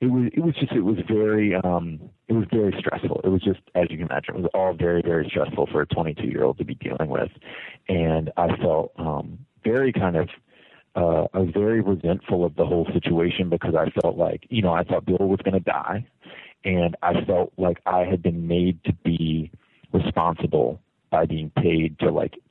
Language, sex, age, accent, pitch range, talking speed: English, male, 30-49, American, 85-115 Hz, 210 wpm